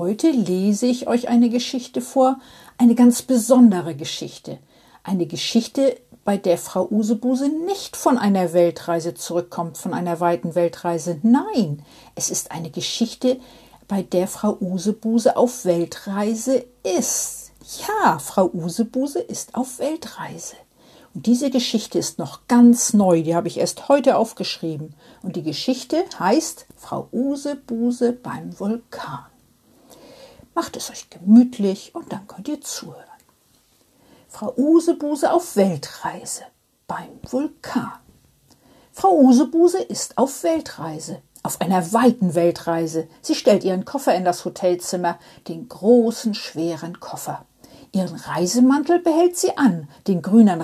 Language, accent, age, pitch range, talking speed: German, German, 50-69, 175-255 Hz, 125 wpm